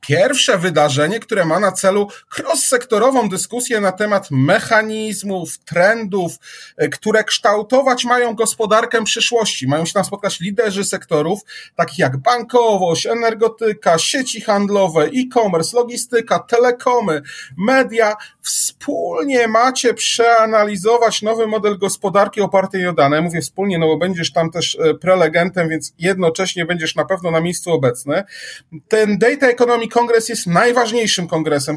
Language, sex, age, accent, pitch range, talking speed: Polish, male, 30-49, native, 160-220 Hz, 125 wpm